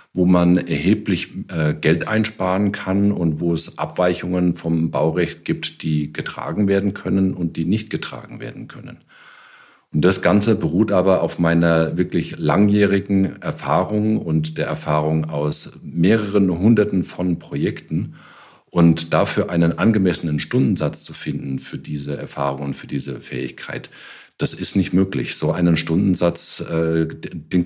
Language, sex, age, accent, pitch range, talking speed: German, male, 50-69, German, 80-95 Hz, 135 wpm